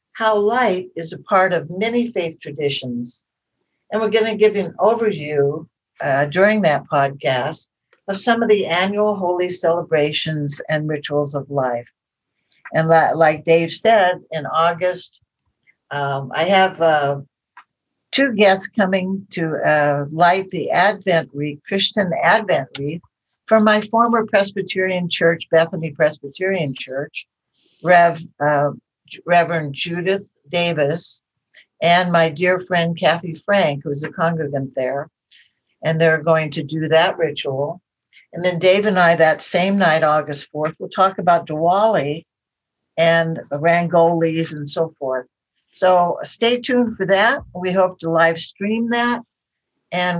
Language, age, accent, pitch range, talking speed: English, 60-79, American, 155-195 Hz, 135 wpm